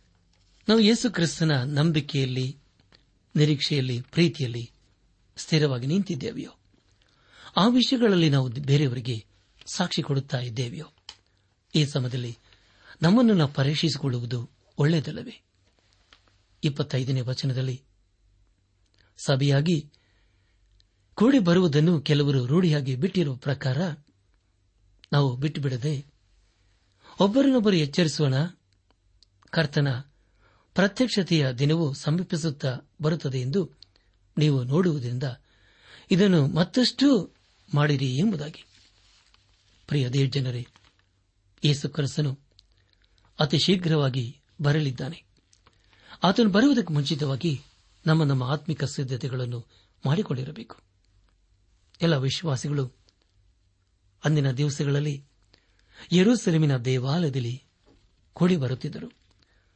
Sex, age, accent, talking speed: male, 60-79, native, 60 wpm